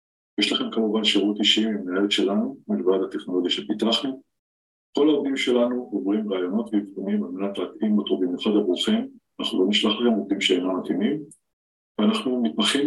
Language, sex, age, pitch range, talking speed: Hebrew, male, 40-59, 100-130 Hz, 150 wpm